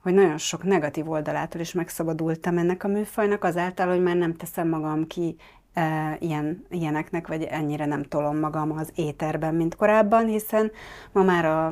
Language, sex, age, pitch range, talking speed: Hungarian, female, 30-49, 155-185 Hz, 160 wpm